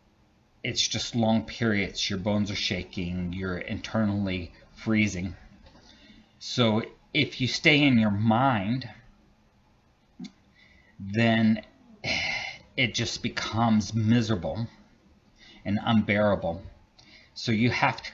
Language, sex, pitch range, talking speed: English, male, 100-115 Hz, 95 wpm